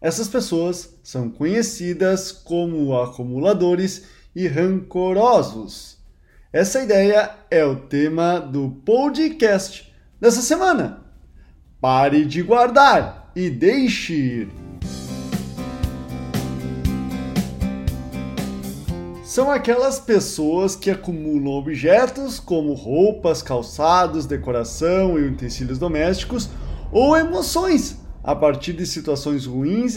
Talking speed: 85 wpm